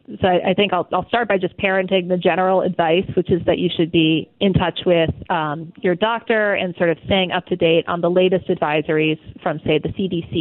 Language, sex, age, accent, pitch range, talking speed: English, female, 30-49, American, 175-210 Hz, 215 wpm